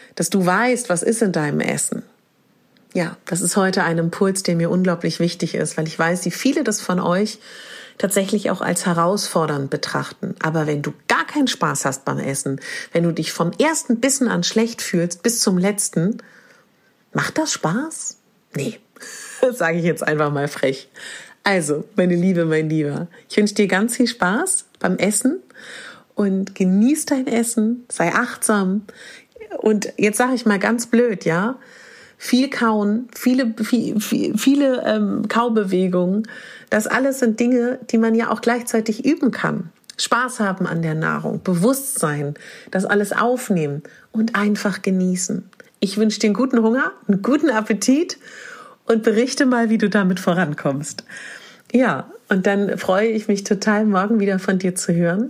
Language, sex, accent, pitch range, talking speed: German, female, German, 180-240 Hz, 165 wpm